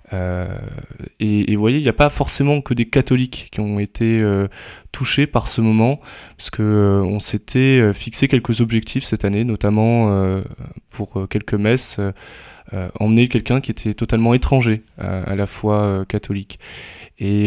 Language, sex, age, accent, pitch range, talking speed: French, male, 20-39, French, 100-120 Hz, 180 wpm